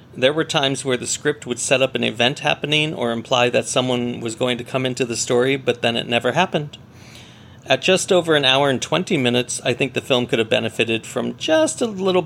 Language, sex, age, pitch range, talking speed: English, male, 40-59, 120-165 Hz, 230 wpm